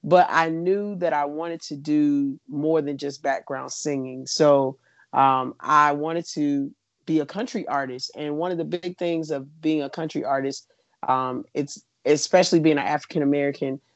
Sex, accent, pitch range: male, American, 140-170 Hz